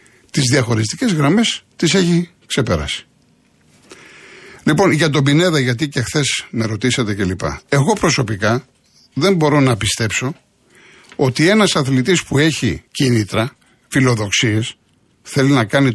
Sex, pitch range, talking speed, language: male, 115-175 Hz, 120 wpm, Greek